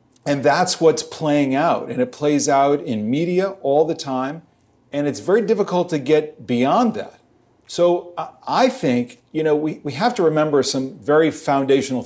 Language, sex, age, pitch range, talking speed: English, male, 40-59, 125-165 Hz, 175 wpm